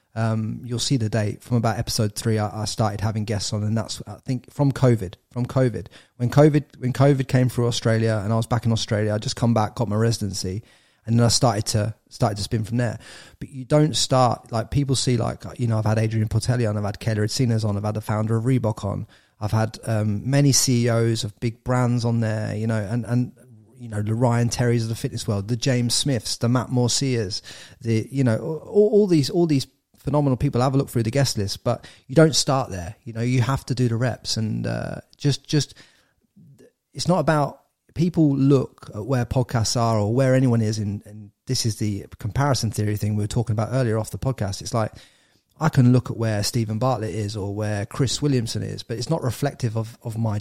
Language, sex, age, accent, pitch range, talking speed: English, male, 30-49, British, 110-130 Hz, 230 wpm